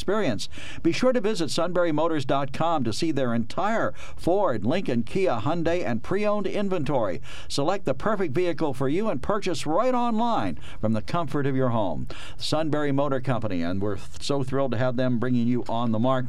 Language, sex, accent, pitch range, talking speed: English, male, American, 125-165 Hz, 175 wpm